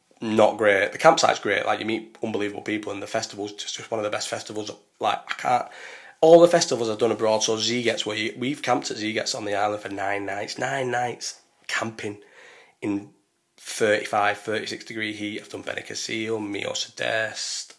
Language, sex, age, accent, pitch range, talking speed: English, male, 20-39, British, 105-115 Hz, 195 wpm